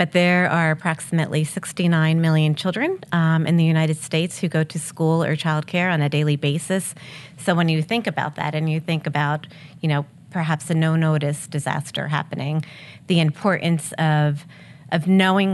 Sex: female